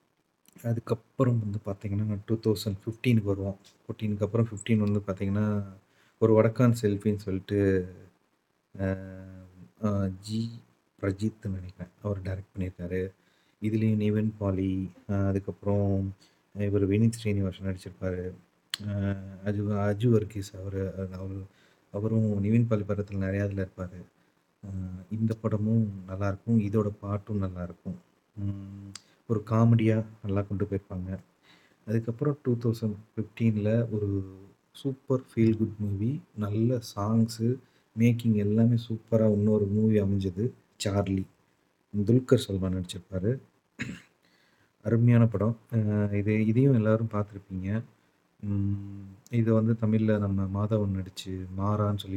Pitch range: 95-110 Hz